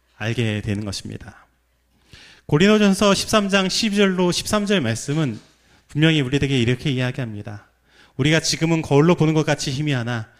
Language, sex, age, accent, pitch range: Korean, male, 30-49, native, 120-185 Hz